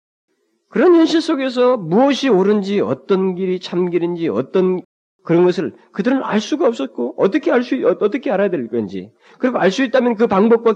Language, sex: Korean, male